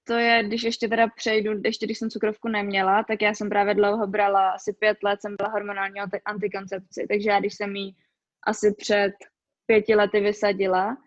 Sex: female